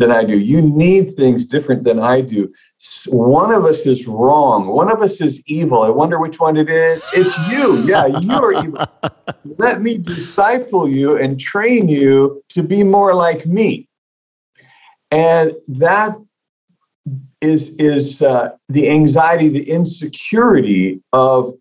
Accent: American